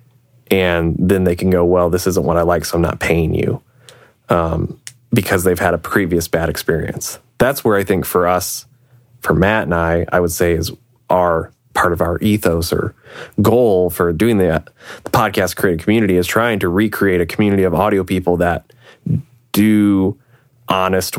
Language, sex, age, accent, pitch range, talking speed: English, male, 20-39, American, 85-100 Hz, 185 wpm